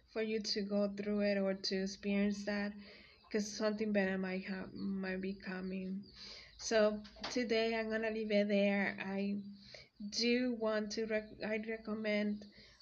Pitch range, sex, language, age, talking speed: 200-215 Hz, female, English, 20-39, 135 wpm